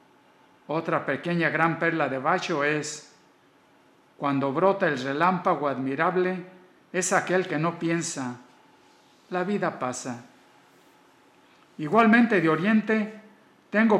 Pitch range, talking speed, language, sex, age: 150-200 Hz, 105 wpm, Spanish, male, 50-69